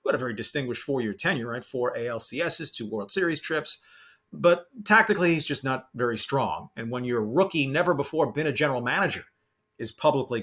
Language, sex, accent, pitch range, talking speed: English, male, American, 125-180 Hz, 185 wpm